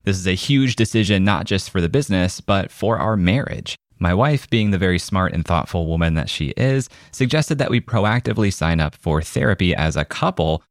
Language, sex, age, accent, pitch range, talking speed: English, male, 30-49, American, 80-110 Hz, 205 wpm